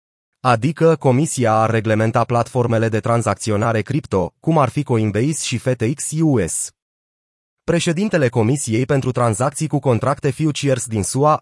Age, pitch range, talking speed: 30-49, 115-145 Hz, 120 wpm